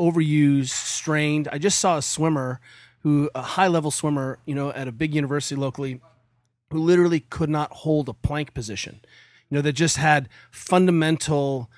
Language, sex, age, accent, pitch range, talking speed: English, male, 30-49, American, 135-170 Hz, 165 wpm